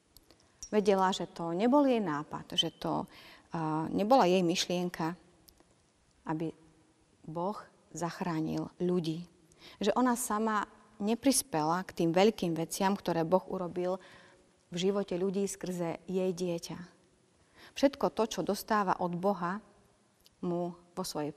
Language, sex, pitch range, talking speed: Slovak, female, 165-210 Hz, 120 wpm